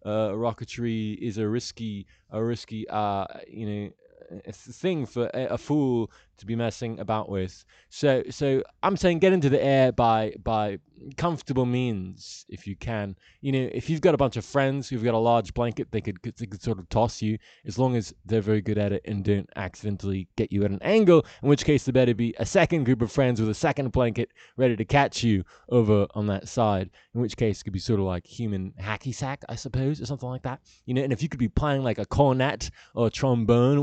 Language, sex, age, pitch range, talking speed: English, male, 20-39, 105-130 Hz, 230 wpm